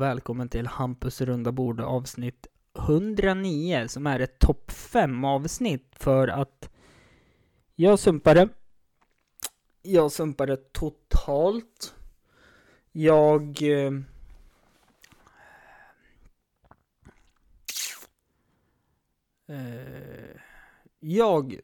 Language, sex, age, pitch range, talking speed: Swedish, male, 20-39, 125-150 Hz, 60 wpm